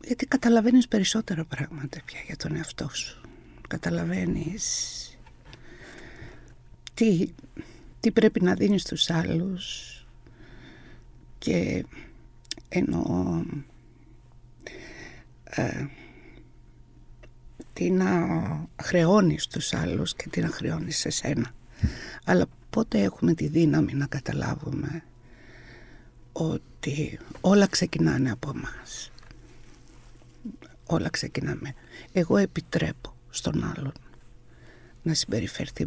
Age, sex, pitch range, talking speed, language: 60-79, female, 135-170 Hz, 85 wpm, Greek